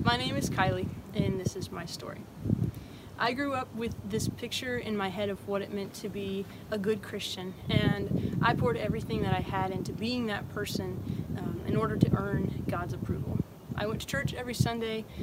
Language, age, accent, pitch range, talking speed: English, 20-39, American, 185-220 Hz, 200 wpm